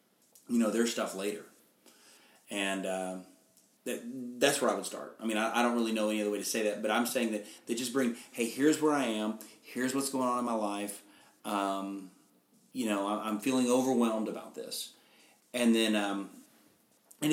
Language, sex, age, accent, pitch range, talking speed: English, male, 30-49, American, 100-120 Hz, 200 wpm